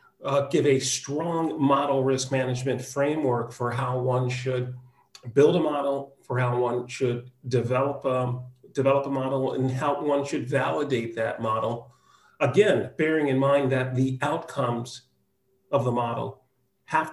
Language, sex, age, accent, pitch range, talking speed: English, male, 40-59, American, 120-140 Hz, 145 wpm